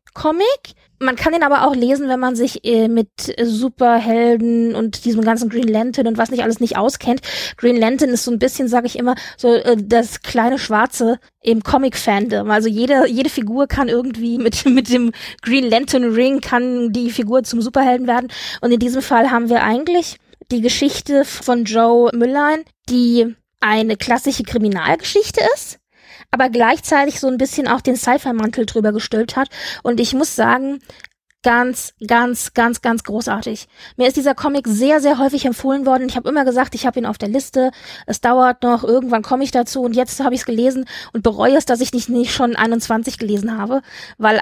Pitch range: 230-265 Hz